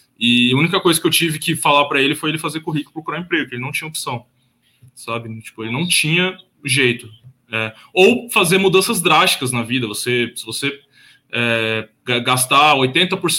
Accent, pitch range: Brazilian, 125-165 Hz